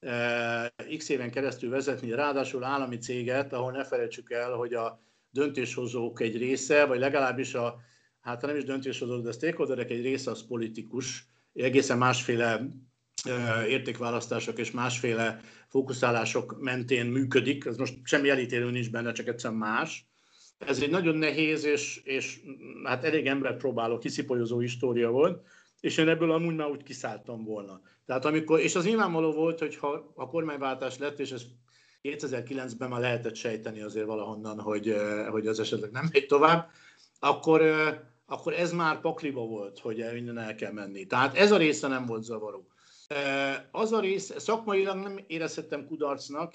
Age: 60-79